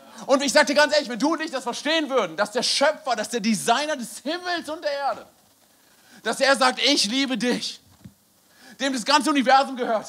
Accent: German